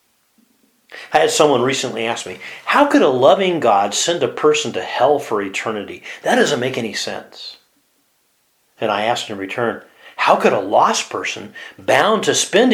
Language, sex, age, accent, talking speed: English, male, 40-59, American, 170 wpm